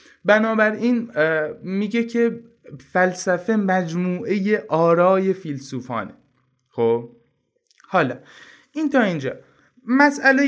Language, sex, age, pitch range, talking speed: Persian, male, 20-39, 145-210 Hz, 80 wpm